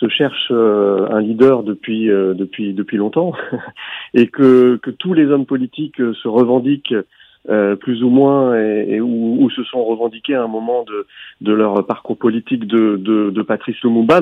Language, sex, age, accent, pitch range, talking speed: French, male, 40-59, French, 105-130 Hz, 180 wpm